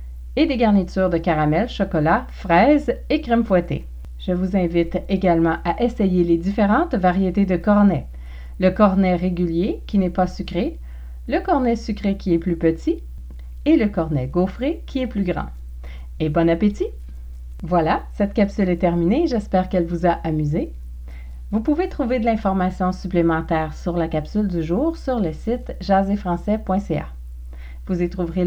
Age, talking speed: 40-59, 155 wpm